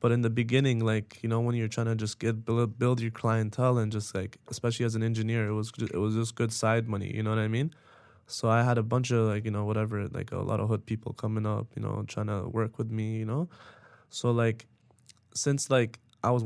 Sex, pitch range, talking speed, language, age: male, 110-120 Hz, 255 wpm, English, 20-39